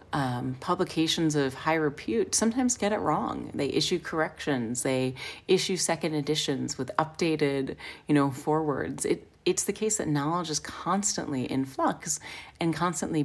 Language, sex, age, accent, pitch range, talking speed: English, female, 30-49, American, 135-175 Hz, 150 wpm